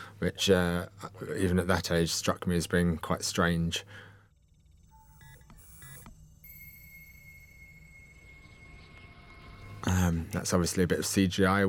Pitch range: 85-100 Hz